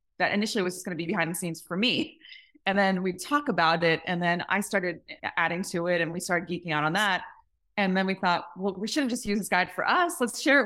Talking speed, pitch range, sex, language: 270 wpm, 160-200 Hz, female, English